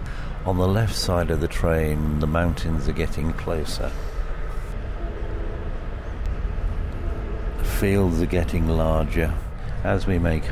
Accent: British